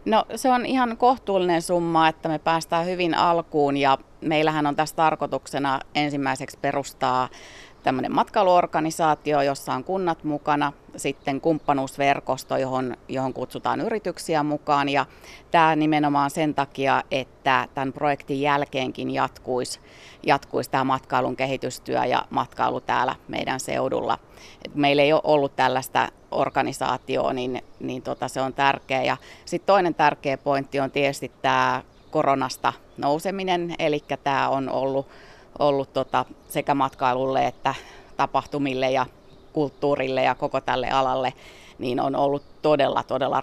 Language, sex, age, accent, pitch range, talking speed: Finnish, female, 30-49, native, 135-155 Hz, 125 wpm